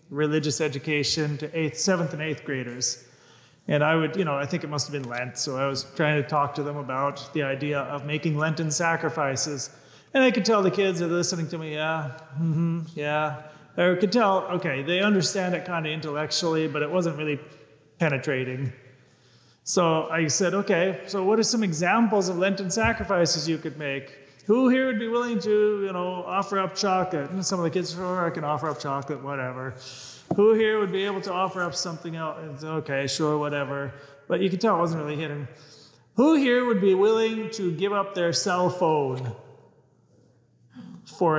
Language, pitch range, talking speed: English, 145-185 Hz, 195 wpm